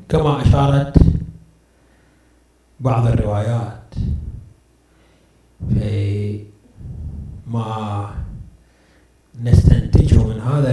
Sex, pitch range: male, 105-165 Hz